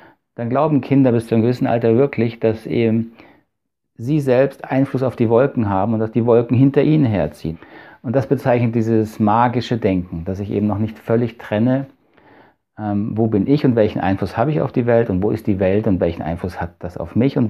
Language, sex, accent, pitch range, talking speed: German, male, German, 100-130 Hz, 215 wpm